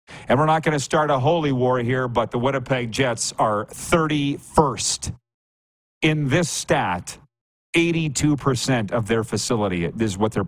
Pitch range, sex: 115-140 Hz, male